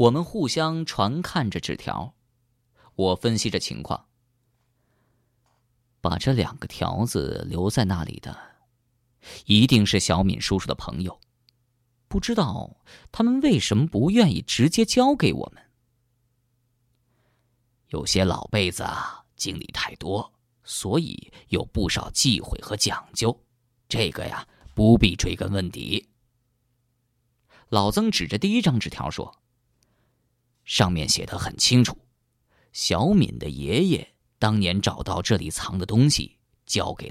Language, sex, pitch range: Chinese, male, 100-120 Hz